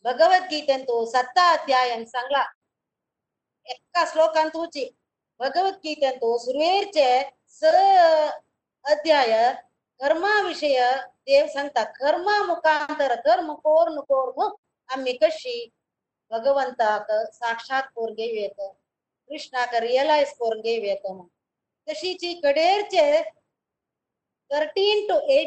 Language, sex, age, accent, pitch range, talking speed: Kannada, female, 20-39, native, 250-320 Hz, 30 wpm